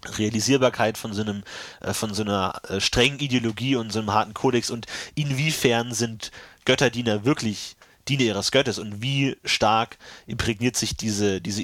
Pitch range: 105-125 Hz